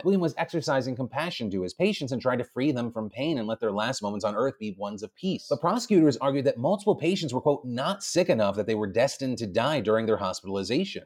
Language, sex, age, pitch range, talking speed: English, male, 30-49, 110-145 Hz, 245 wpm